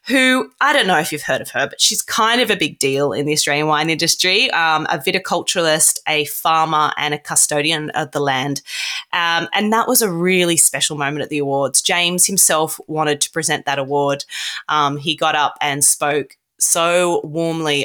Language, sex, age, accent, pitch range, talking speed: English, female, 20-39, Australian, 150-185 Hz, 195 wpm